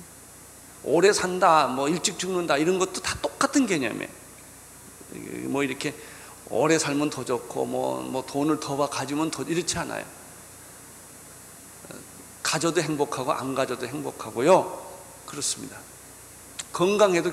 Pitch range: 140-200 Hz